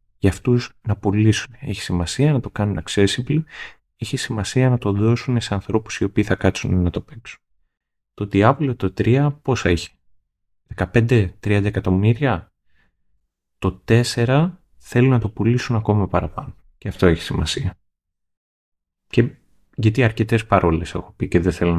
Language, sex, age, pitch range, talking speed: Greek, male, 30-49, 90-115 Hz, 145 wpm